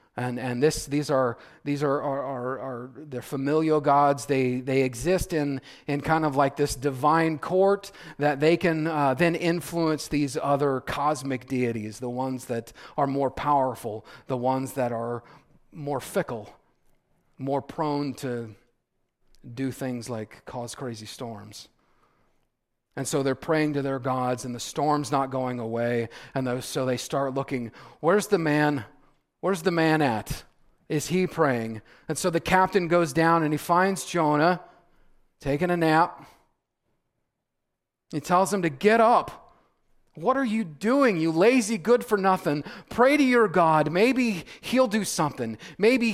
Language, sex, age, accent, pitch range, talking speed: English, male, 40-59, American, 130-175 Hz, 155 wpm